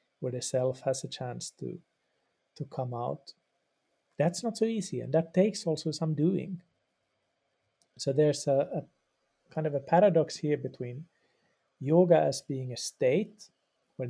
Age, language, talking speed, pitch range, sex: 50-69, English, 155 wpm, 135-175 Hz, male